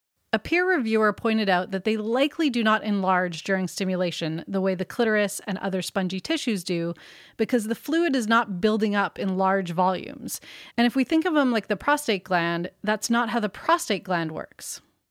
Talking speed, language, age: 195 wpm, English, 30-49